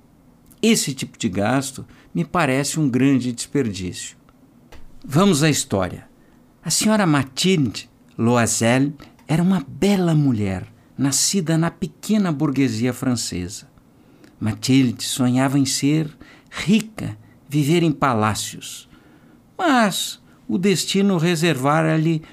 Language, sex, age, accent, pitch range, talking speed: Portuguese, male, 60-79, Brazilian, 125-205 Hz, 100 wpm